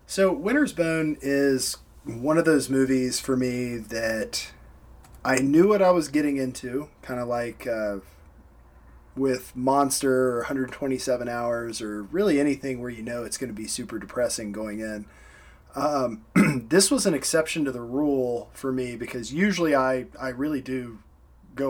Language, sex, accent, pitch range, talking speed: English, male, American, 110-140 Hz, 160 wpm